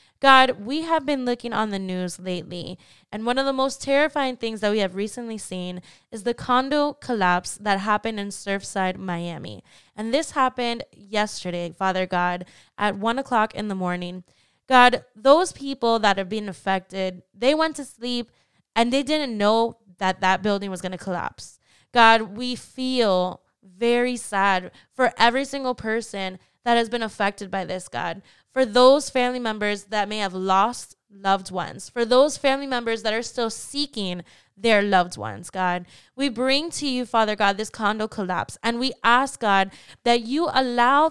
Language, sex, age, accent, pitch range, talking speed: English, female, 10-29, American, 195-255 Hz, 170 wpm